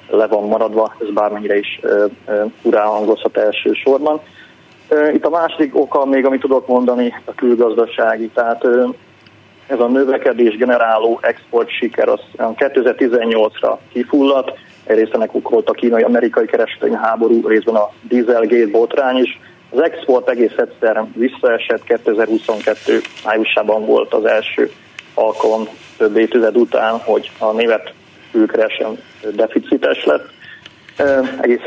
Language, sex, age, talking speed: Hungarian, male, 30-49, 125 wpm